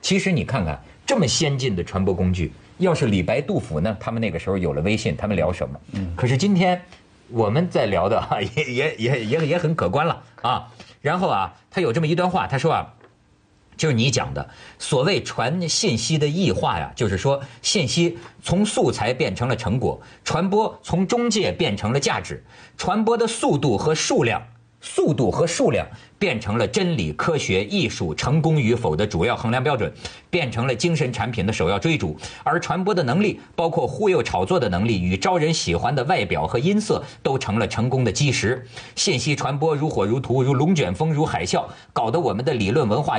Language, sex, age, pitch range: Chinese, male, 50-69, 115-165 Hz